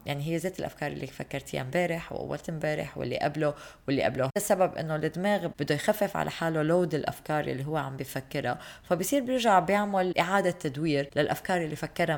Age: 20-39